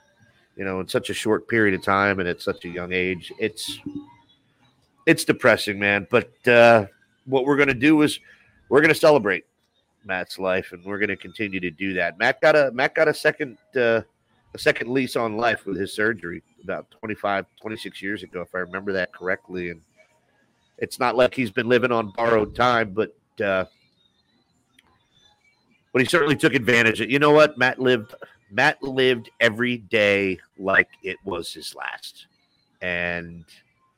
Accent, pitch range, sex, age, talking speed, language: American, 95-125 Hz, male, 50-69, 180 wpm, English